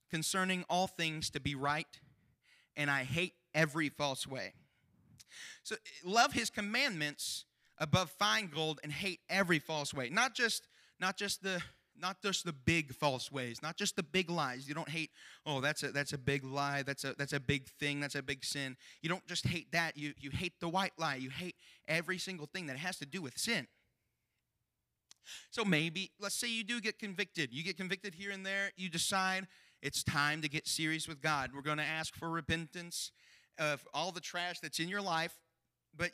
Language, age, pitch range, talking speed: English, 30-49, 145-190 Hz, 200 wpm